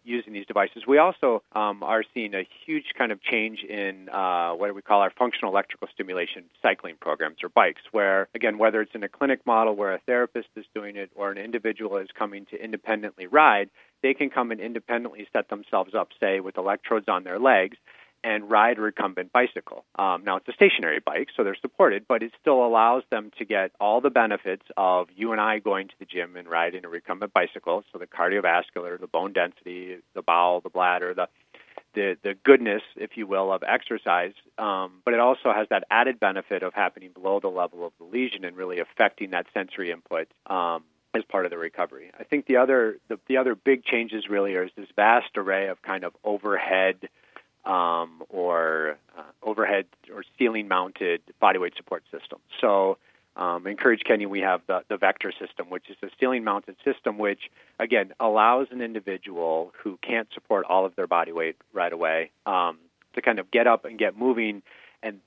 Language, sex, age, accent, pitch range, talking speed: English, male, 40-59, American, 90-115 Hz, 195 wpm